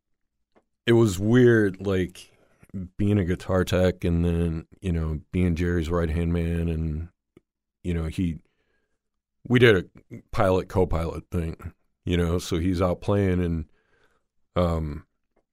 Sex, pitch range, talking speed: male, 85-95 Hz, 130 wpm